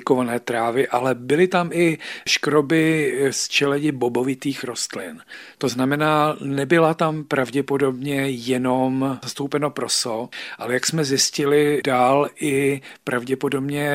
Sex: male